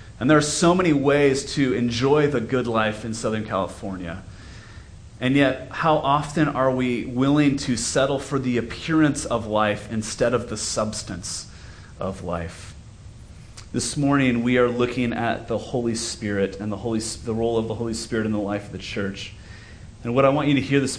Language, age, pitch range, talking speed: English, 30-49, 105-135 Hz, 190 wpm